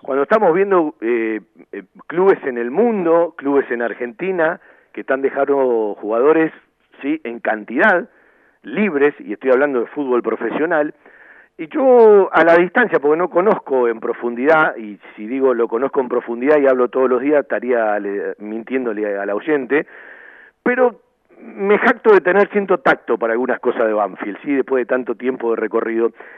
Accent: Argentinian